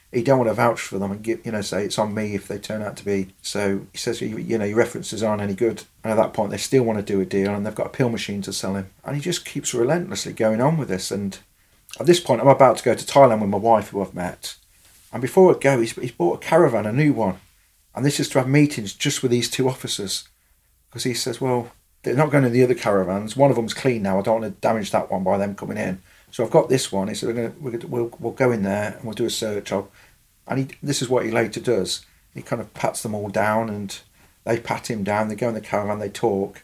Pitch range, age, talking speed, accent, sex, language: 100-125 Hz, 40-59, 295 wpm, British, male, English